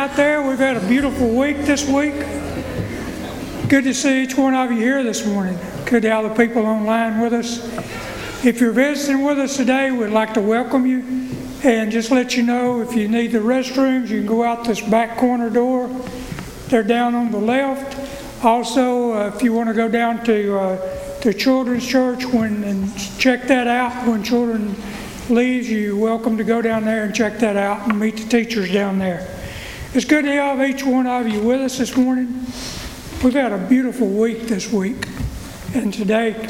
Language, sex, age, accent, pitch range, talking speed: English, male, 60-79, American, 220-255 Hz, 195 wpm